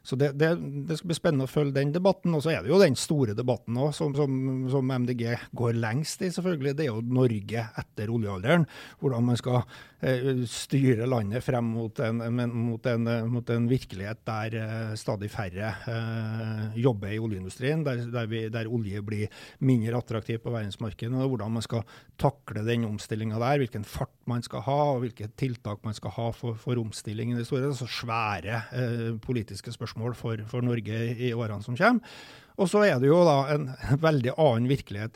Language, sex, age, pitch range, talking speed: English, male, 60-79, 115-135 Hz, 195 wpm